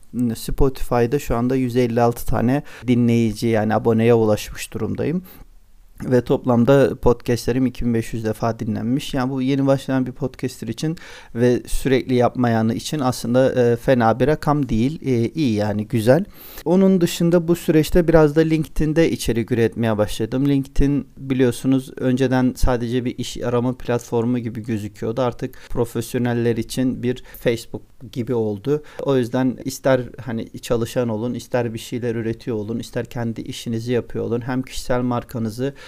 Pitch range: 115-130 Hz